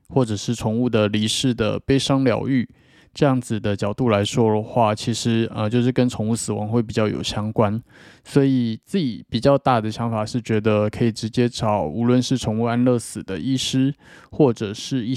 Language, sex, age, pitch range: Chinese, male, 20-39, 110-130 Hz